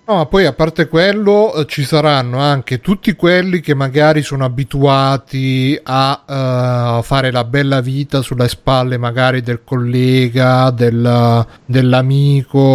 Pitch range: 120-145 Hz